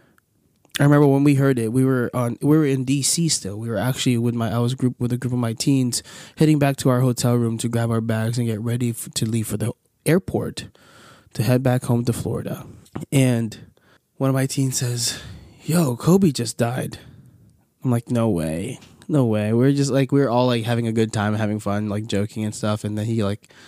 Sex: male